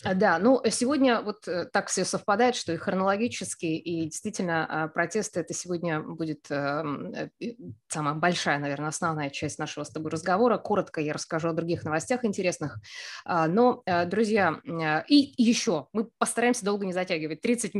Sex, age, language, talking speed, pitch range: female, 20-39, English, 140 wpm, 165-210 Hz